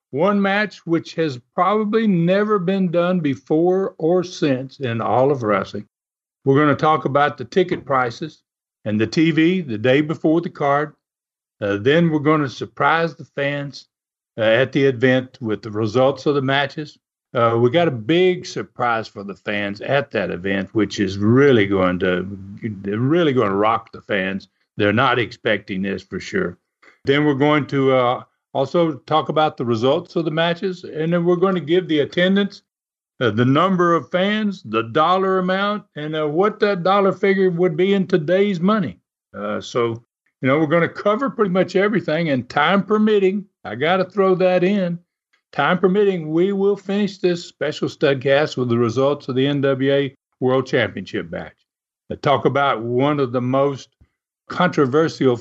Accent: American